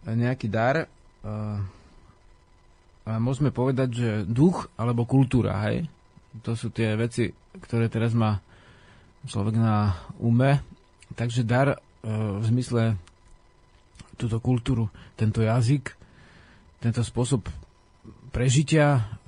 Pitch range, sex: 105-125 Hz, male